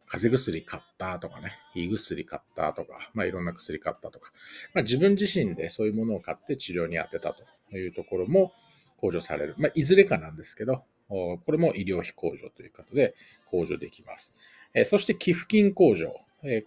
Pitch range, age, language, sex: 105-175 Hz, 40-59, Japanese, male